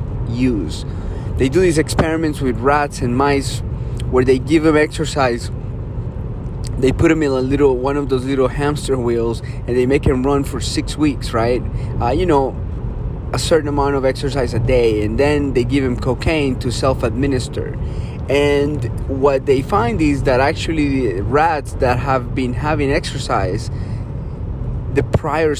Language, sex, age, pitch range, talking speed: English, male, 30-49, 115-145 Hz, 160 wpm